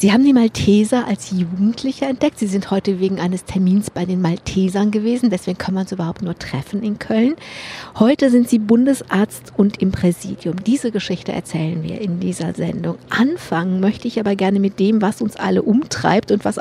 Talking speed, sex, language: 190 wpm, female, German